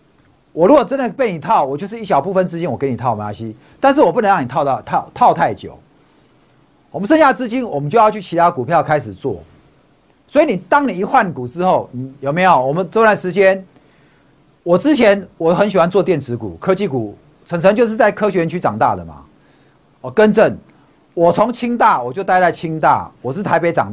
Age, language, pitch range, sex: 50-69, Chinese, 135-210 Hz, male